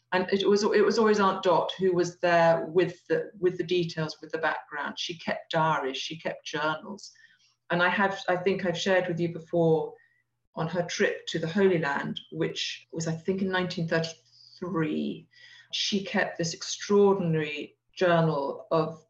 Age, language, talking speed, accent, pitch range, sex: 40-59, English, 170 wpm, British, 160-185 Hz, female